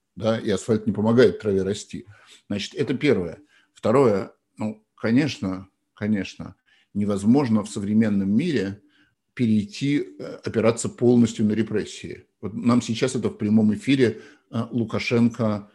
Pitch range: 100-115 Hz